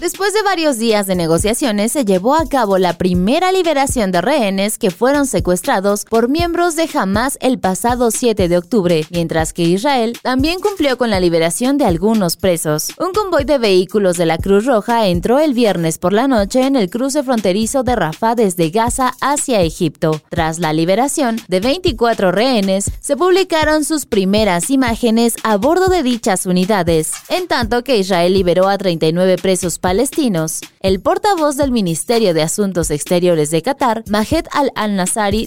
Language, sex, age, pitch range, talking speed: Spanish, female, 20-39, 185-275 Hz, 165 wpm